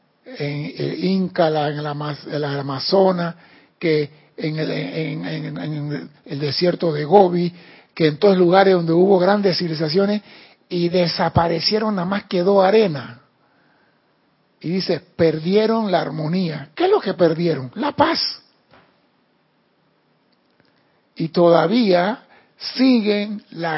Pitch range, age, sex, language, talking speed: 160-200 Hz, 60-79, male, Spanish, 130 wpm